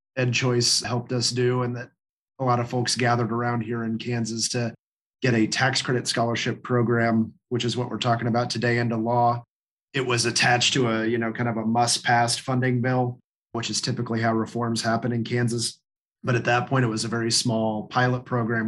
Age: 30-49